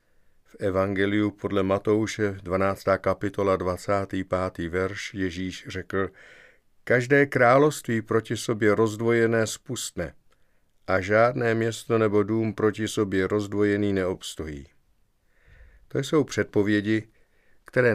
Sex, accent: male, native